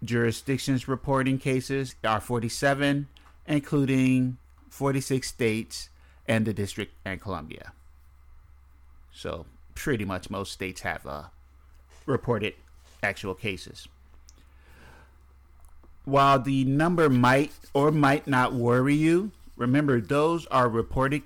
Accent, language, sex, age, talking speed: American, English, male, 50-69, 100 wpm